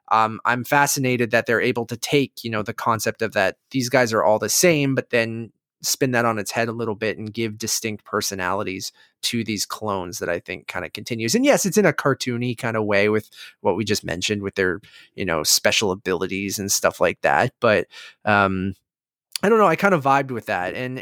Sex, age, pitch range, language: male, 20-39, 110-155 Hz, English